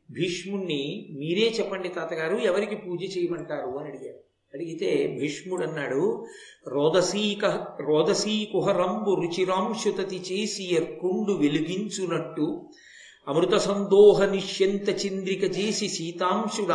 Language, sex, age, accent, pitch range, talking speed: Telugu, male, 50-69, native, 170-215 Hz, 95 wpm